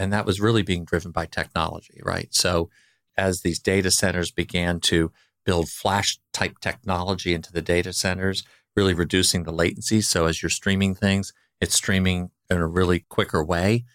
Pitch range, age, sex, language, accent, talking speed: 85-100 Hz, 50-69, male, English, American, 170 wpm